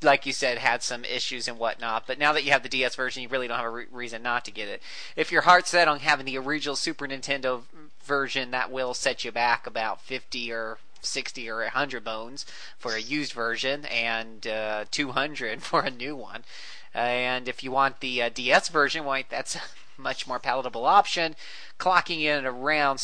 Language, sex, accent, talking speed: English, male, American, 220 wpm